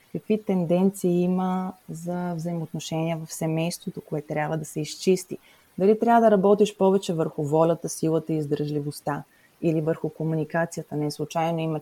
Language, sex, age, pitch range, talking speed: Bulgarian, female, 20-39, 155-195 Hz, 140 wpm